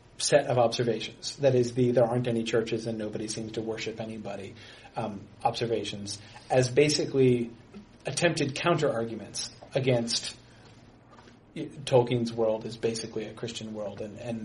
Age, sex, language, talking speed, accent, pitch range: 30-49, male, English, 135 wpm, American, 115-135 Hz